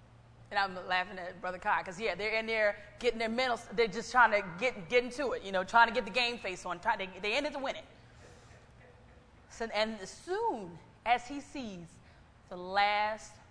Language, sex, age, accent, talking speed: English, female, 20-39, American, 200 wpm